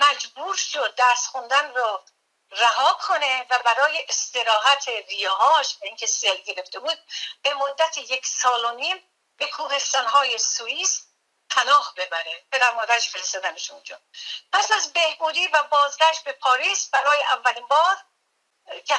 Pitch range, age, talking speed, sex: 235-315 Hz, 50-69, 120 wpm, female